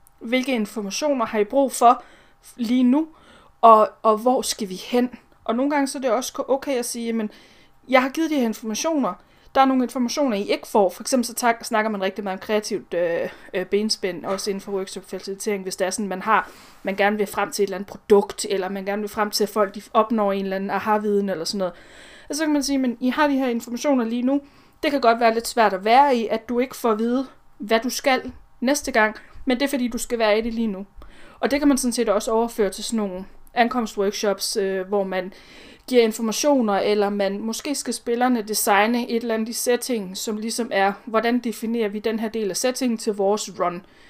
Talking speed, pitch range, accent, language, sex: 240 wpm, 205-245 Hz, native, Danish, female